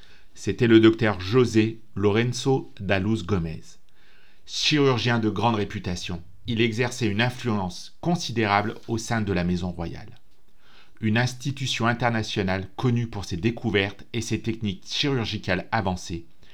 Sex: male